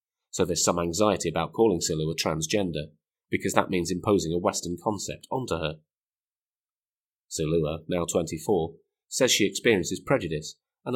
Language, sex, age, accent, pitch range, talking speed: English, male, 30-49, British, 80-95 Hz, 135 wpm